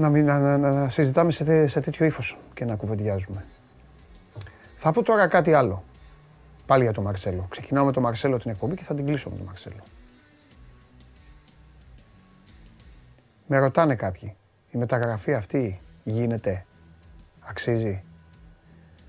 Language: Greek